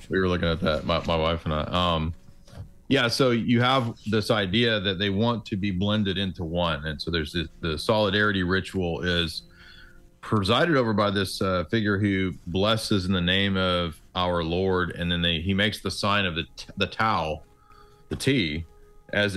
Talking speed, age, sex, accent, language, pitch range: 190 wpm, 40-59, male, American, English, 85-105 Hz